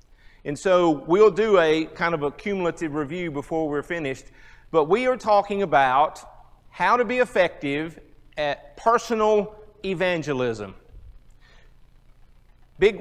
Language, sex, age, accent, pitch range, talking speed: English, male, 40-59, American, 155-210 Hz, 120 wpm